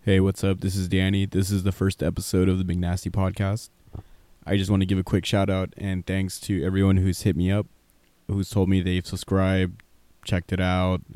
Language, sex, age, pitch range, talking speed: English, male, 20-39, 90-100 Hz, 220 wpm